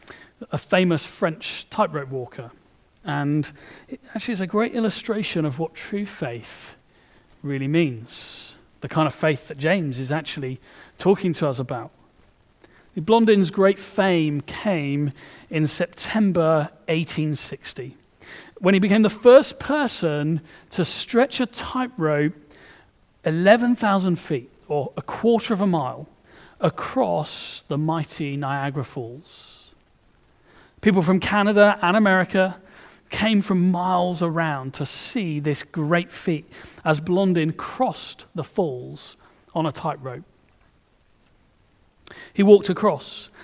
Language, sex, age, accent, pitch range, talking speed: English, male, 40-59, British, 150-205 Hz, 115 wpm